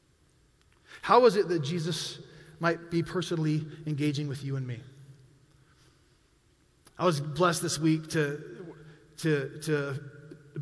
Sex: male